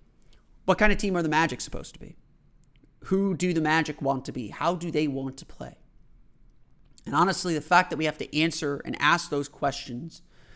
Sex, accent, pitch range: male, American, 135-175 Hz